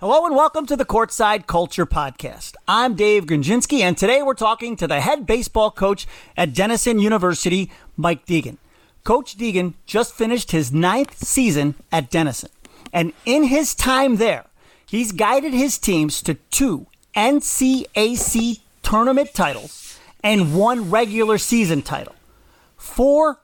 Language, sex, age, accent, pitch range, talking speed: English, male, 40-59, American, 175-250 Hz, 140 wpm